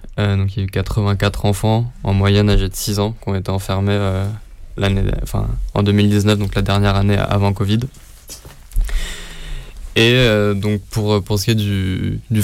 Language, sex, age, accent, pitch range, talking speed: French, male, 20-39, French, 95-110 Hz, 195 wpm